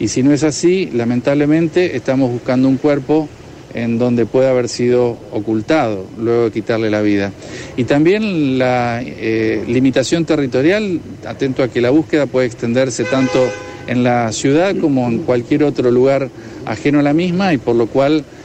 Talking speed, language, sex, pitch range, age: 165 wpm, Spanish, male, 120-150 Hz, 50-69